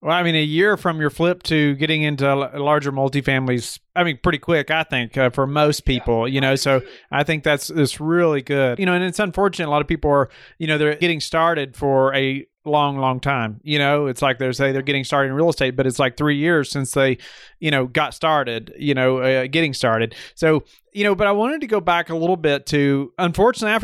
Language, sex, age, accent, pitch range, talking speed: English, male, 30-49, American, 135-160 Hz, 235 wpm